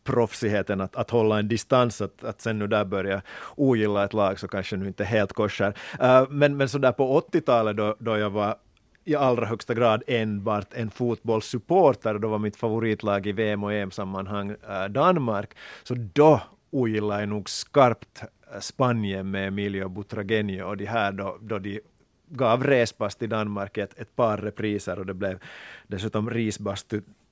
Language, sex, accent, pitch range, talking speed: Swedish, male, Finnish, 100-120 Hz, 170 wpm